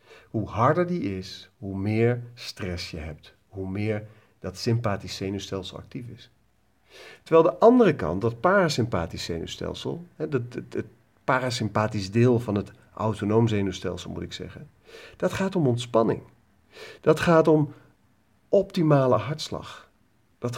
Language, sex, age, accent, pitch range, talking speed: Dutch, male, 50-69, Dutch, 105-140 Hz, 125 wpm